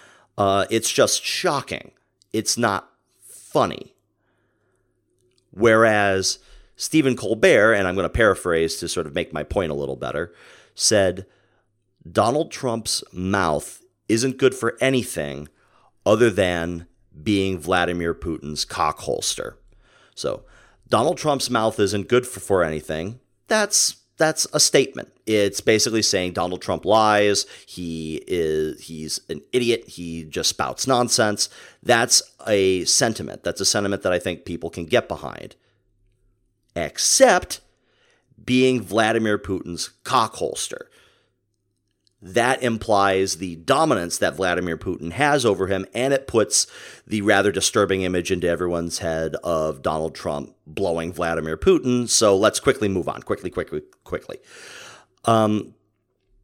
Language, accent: English, American